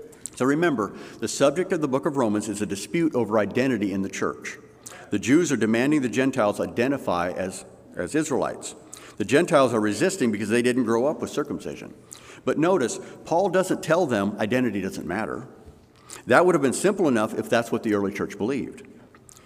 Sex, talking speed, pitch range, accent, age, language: male, 185 wpm, 110-160 Hz, American, 60-79, English